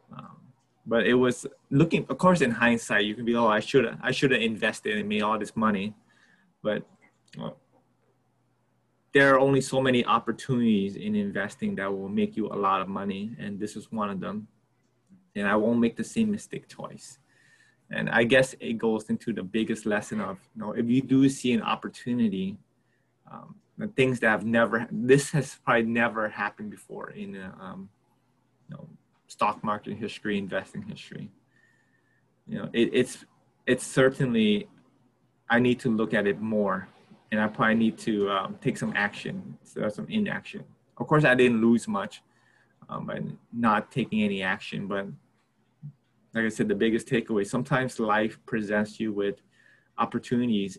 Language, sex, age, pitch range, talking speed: English, male, 20-39, 110-135 Hz, 170 wpm